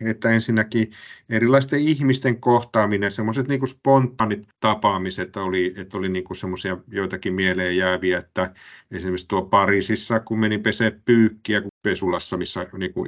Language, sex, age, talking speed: Finnish, male, 50-69, 130 wpm